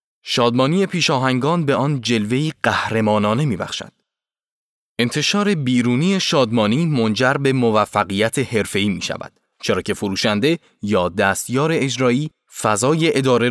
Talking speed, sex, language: 105 wpm, male, Persian